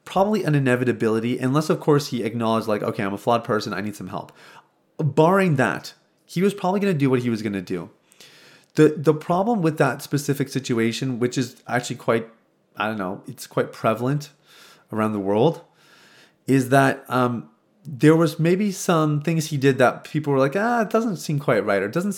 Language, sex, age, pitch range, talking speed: English, male, 30-49, 110-155 Hz, 205 wpm